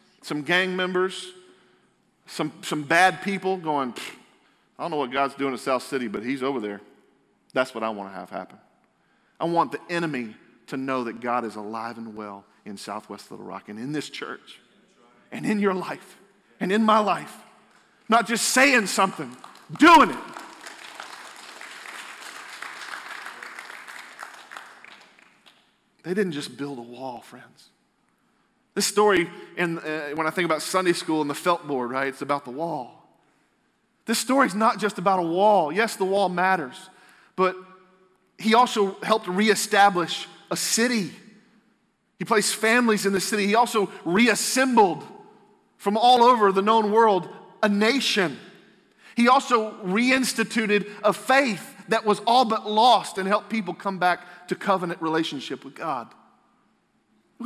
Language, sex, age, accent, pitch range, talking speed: English, male, 40-59, American, 160-220 Hz, 150 wpm